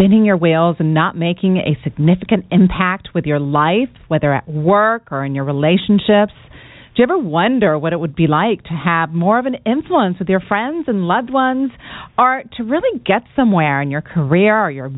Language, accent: English, American